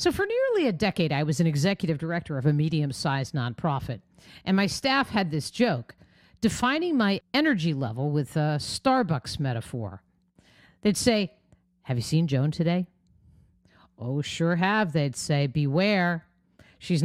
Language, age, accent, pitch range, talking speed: English, 50-69, American, 135-210 Hz, 150 wpm